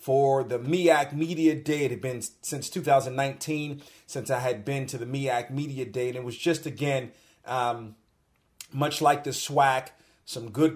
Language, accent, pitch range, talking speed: English, American, 120-150 Hz, 175 wpm